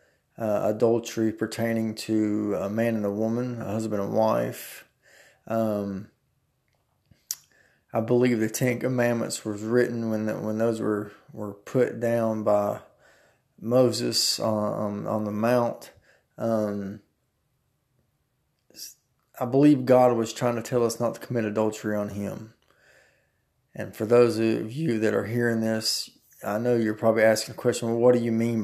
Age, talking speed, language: 20-39, 150 wpm, English